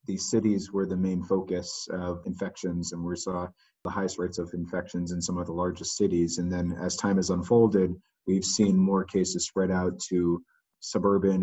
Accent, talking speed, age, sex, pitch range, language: American, 190 wpm, 30-49, male, 90-110 Hz, English